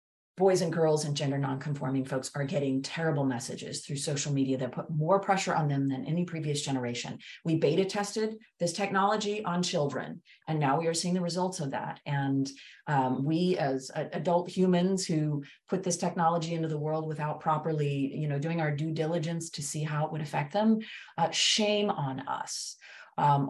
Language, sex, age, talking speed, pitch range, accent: English, female, 30-49, 190 wpm, 140-175 Hz, American